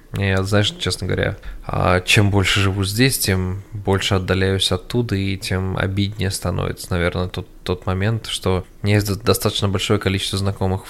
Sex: male